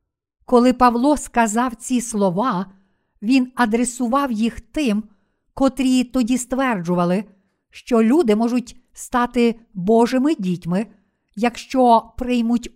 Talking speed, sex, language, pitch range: 95 wpm, female, Ukrainian, 195-250 Hz